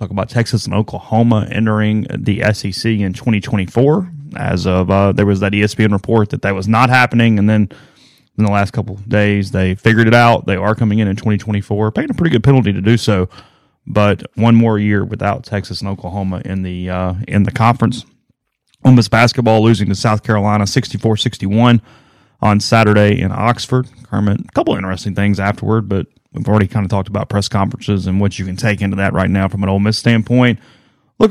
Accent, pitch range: American, 100-120 Hz